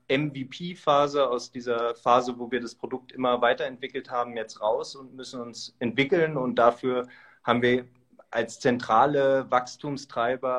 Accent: German